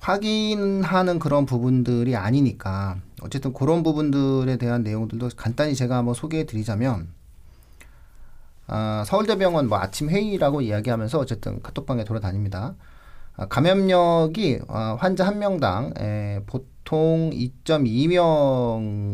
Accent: native